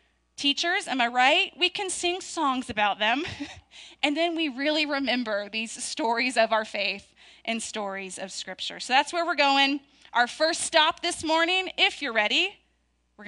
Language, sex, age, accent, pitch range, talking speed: English, female, 20-39, American, 200-275 Hz, 170 wpm